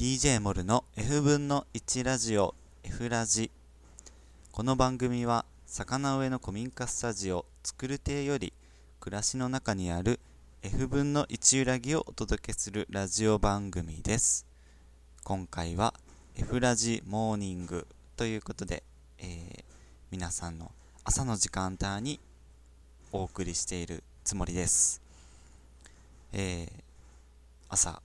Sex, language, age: male, Japanese, 20-39